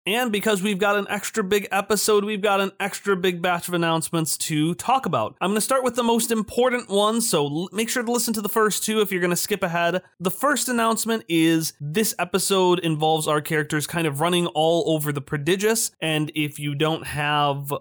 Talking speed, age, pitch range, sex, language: 215 wpm, 30-49, 150-210 Hz, male, English